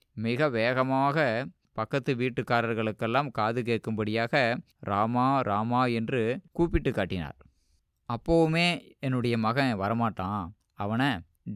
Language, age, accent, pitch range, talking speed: Tamil, 20-39, native, 110-145 Hz, 85 wpm